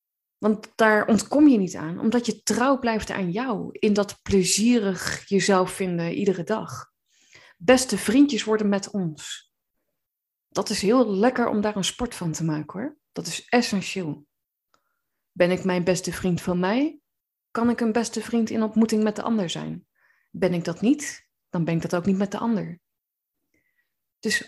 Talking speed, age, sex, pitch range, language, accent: 175 wpm, 20-39, female, 180-230 Hz, Dutch, Dutch